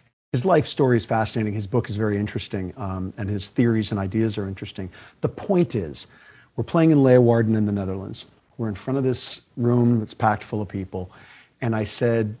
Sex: male